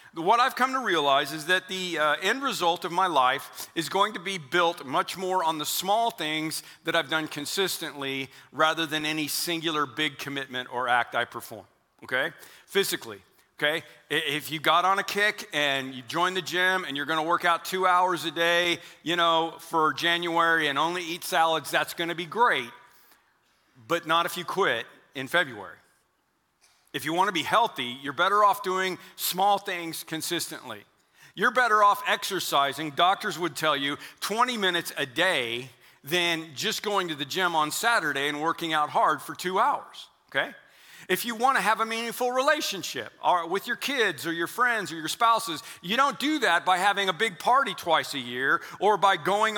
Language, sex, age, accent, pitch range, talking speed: English, male, 40-59, American, 155-195 Hz, 190 wpm